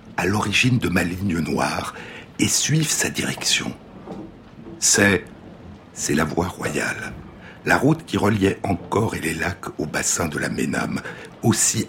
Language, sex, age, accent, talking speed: French, male, 60-79, French, 145 wpm